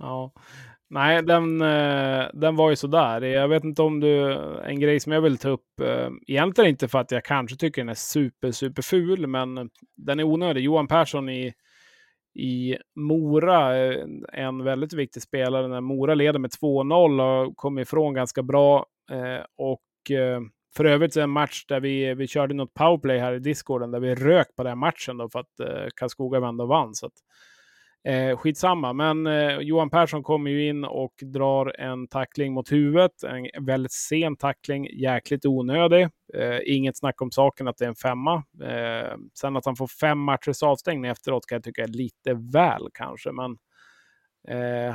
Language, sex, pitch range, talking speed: Swedish, male, 125-150 Hz, 185 wpm